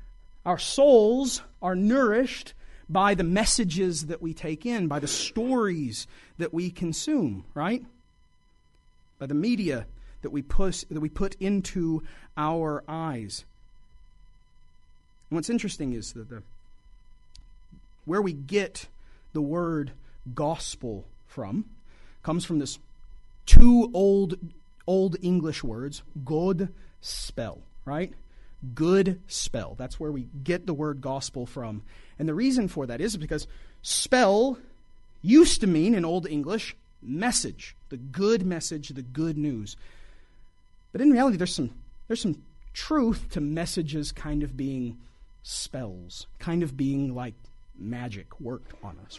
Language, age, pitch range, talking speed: English, 30-49, 120-190 Hz, 130 wpm